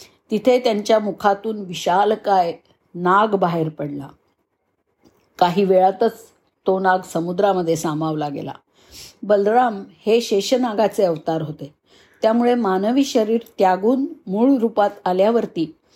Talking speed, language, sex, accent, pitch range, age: 100 wpm, Marathi, female, native, 175-230 Hz, 50-69